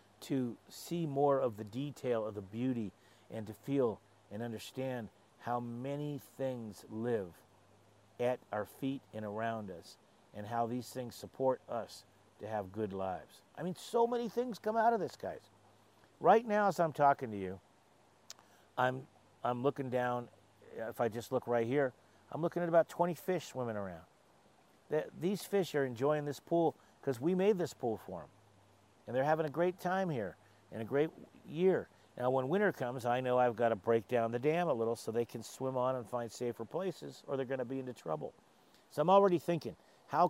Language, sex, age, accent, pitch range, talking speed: English, male, 50-69, American, 110-145 Hz, 190 wpm